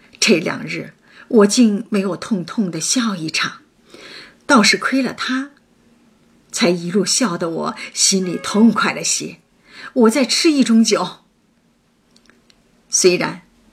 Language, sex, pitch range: Chinese, female, 190-245 Hz